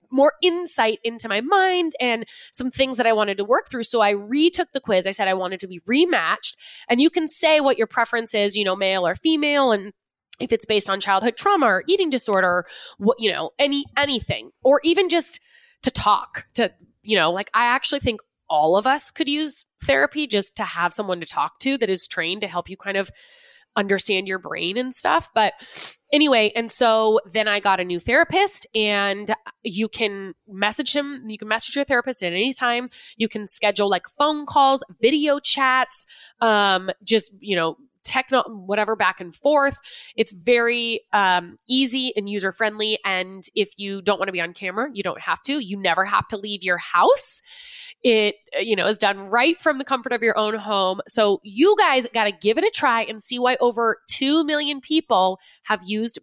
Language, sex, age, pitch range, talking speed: English, female, 20-39, 200-280 Hz, 205 wpm